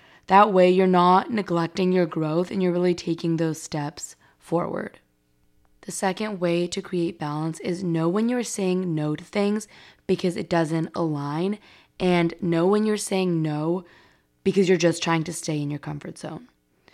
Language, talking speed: English, 170 wpm